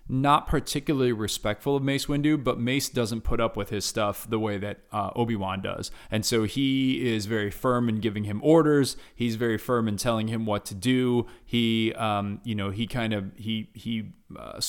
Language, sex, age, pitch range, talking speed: English, male, 20-39, 105-125 Hz, 200 wpm